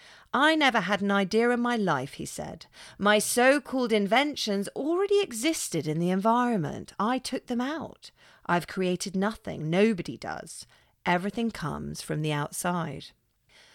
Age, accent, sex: 40-59, British, female